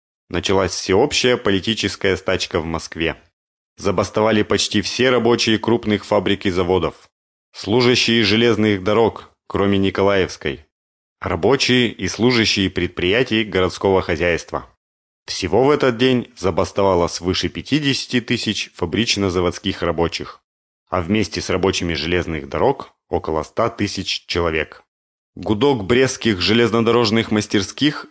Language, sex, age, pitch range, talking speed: Russian, male, 30-49, 95-115 Hz, 100 wpm